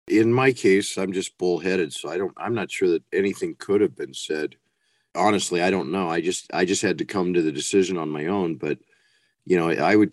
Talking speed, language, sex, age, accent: 235 wpm, English, male, 50-69, American